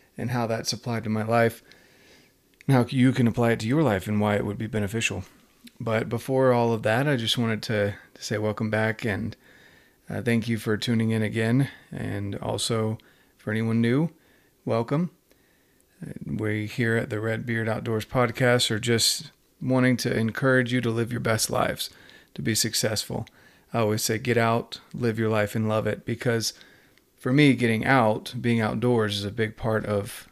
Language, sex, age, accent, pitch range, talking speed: English, male, 30-49, American, 110-125 Hz, 185 wpm